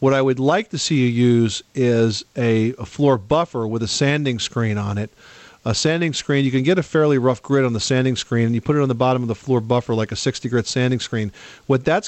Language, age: English, 40-59